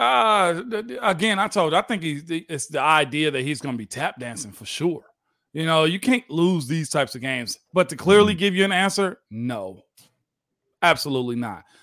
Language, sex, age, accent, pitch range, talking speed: English, male, 40-59, American, 145-195 Hz, 200 wpm